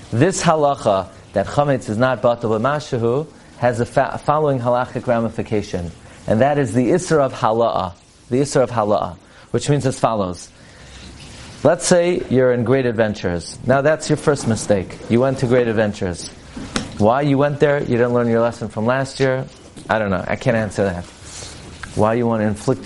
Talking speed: 185 wpm